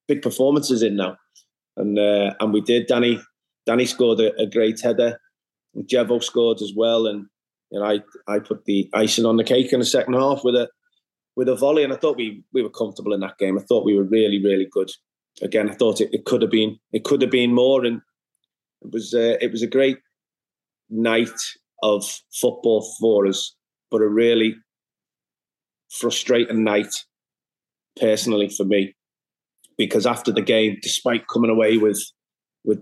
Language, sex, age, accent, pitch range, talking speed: English, male, 30-49, British, 105-125 Hz, 185 wpm